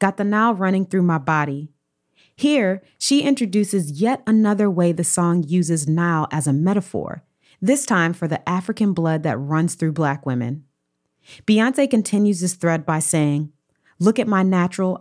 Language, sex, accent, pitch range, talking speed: English, female, American, 150-195 Hz, 165 wpm